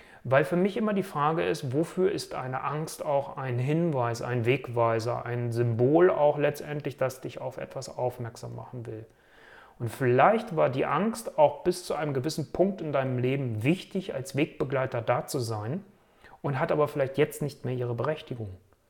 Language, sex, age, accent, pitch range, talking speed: German, male, 30-49, German, 125-155 Hz, 180 wpm